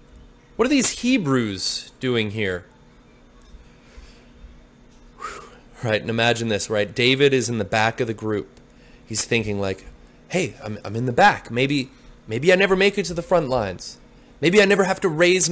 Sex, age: male, 30-49